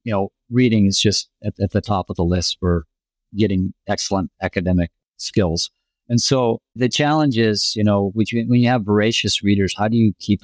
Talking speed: 200 wpm